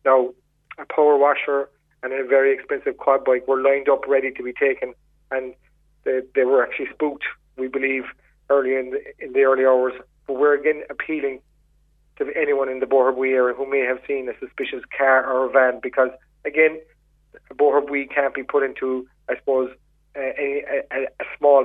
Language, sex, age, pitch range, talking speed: English, male, 30-49, 125-140 Hz, 185 wpm